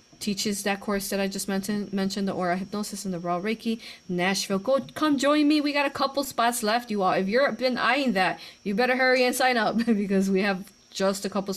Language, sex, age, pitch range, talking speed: English, female, 30-49, 180-240 Hz, 235 wpm